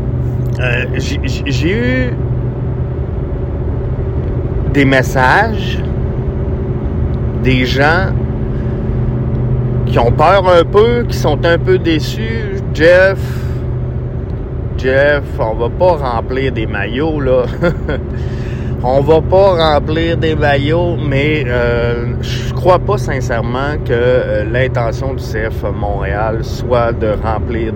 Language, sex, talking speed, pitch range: French, male, 100 wpm, 120-140 Hz